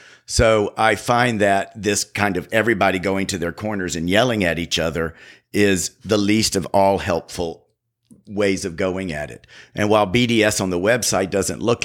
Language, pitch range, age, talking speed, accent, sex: English, 85-105 Hz, 50-69, 180 wpm, American, male